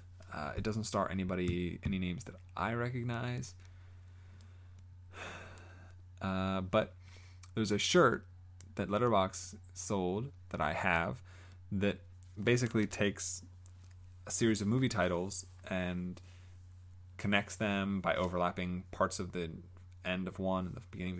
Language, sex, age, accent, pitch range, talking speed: English, male, 20-39, American, 90-105 Hz, 125 wpm